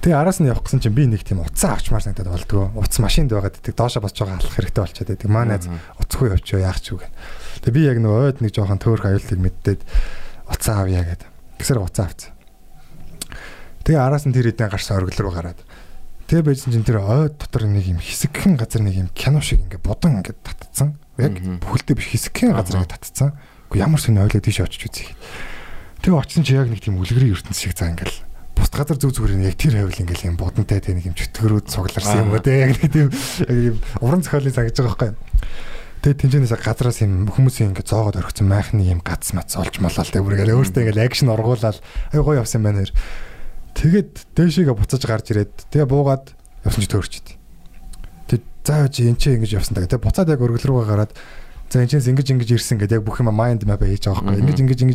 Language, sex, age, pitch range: Korean, male, 20-39, 95-130 Hz